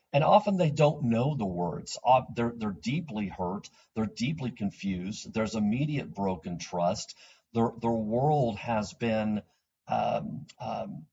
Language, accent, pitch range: English, American, 105-140 Hz